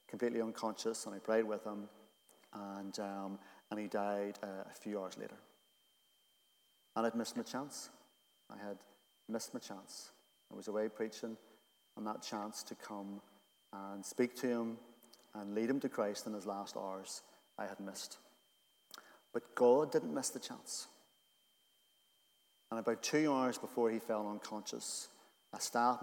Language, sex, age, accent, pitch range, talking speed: English, male, 40-59, British, 105-120 Hz, 155 wpm